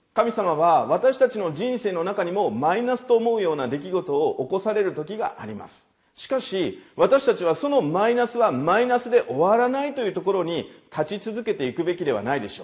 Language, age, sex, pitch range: Japanese, 40-59, male, 165-265 Hz